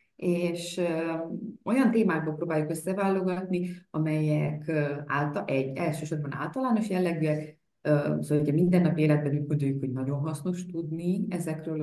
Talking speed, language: 110 wpm, Hungarian